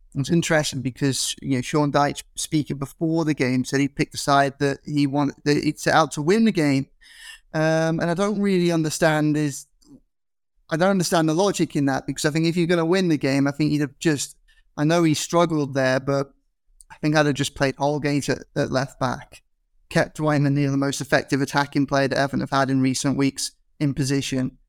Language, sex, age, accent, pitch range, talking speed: English, male, 30-49, British, 140-160 Hz, 225 wpm